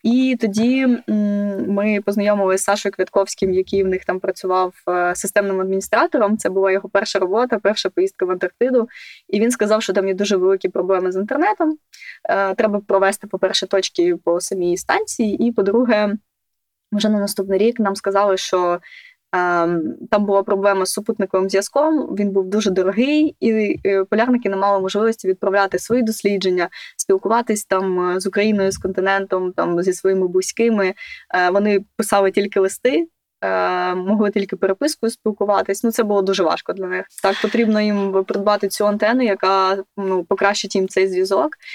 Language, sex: Ukrainian, female